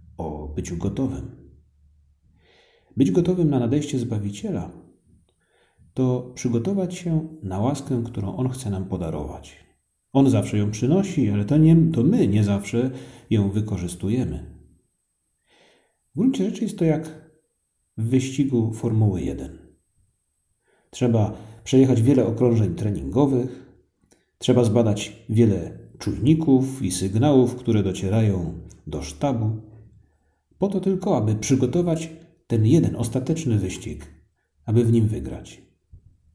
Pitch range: 90-130 Hz